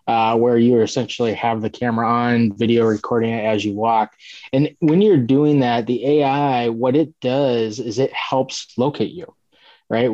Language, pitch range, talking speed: English, 110-130 Hz, 180 wpm